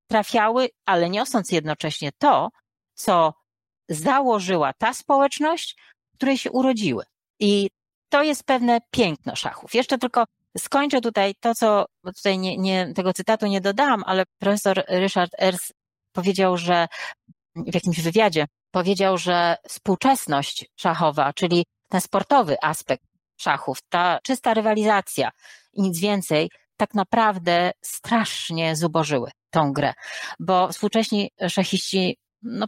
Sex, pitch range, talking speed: female, 175-235 Hz, 120 wpm